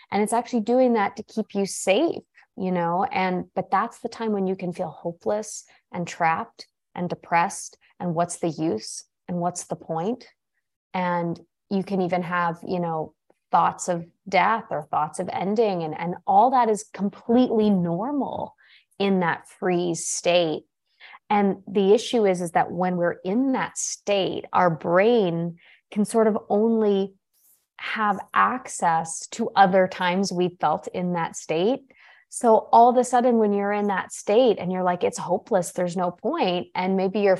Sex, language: female, English